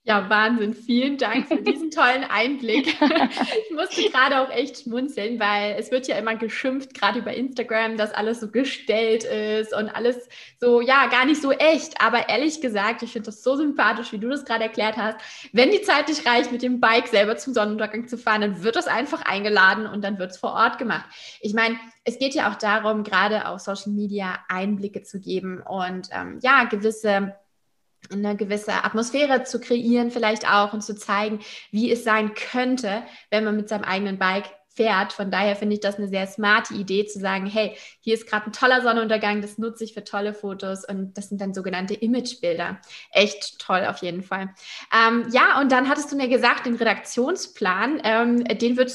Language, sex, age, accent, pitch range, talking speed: German, female, 20-39, German, 205-255 Hz, 200 wpm